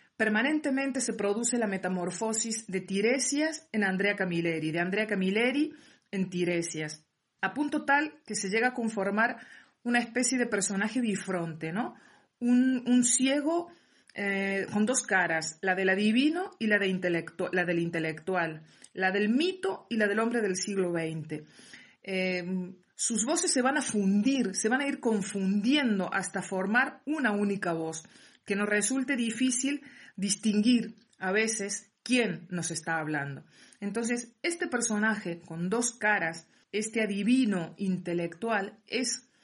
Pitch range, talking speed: 185-245 Hz, 140 wpm